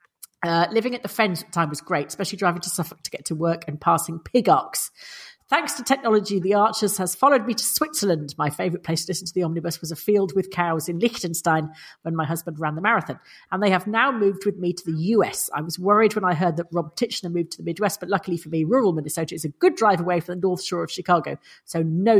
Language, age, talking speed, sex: English, 40-59, 250 wpm, female